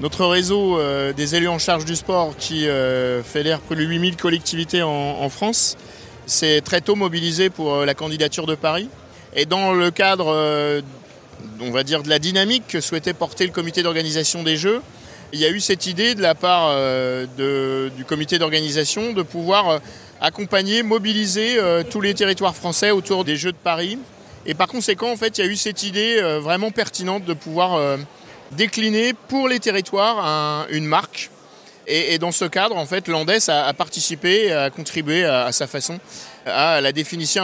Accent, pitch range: French, 155-195 Hz